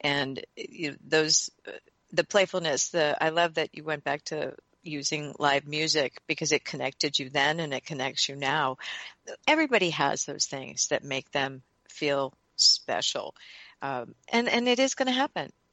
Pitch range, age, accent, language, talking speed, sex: 155-205 Hz, 50-69, American, English, 160 wpm, female